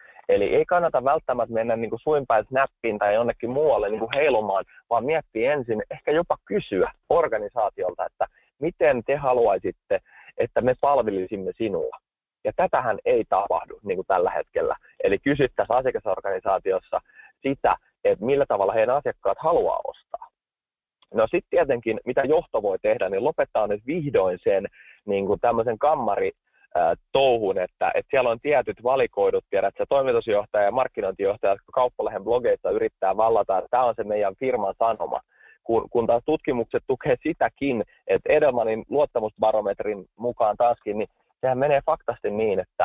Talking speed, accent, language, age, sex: 145 wpm, native, Finnish, 30-49, male